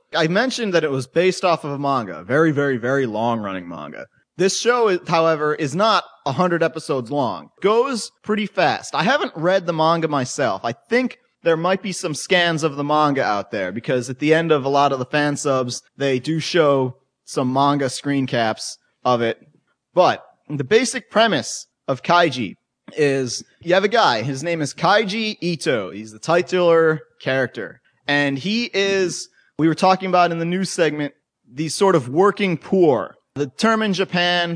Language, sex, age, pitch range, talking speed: English, male, 30-49, 145-190 Hz, 185 wpm